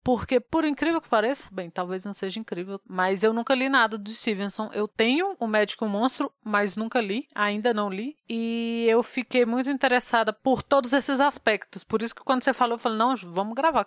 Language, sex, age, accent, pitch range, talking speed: Portuguese, female, 20-39, Brazilian, 215-260 Hz, 210 wpm